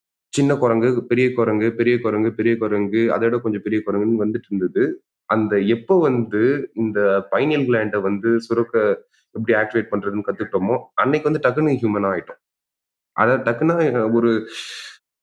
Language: Tamil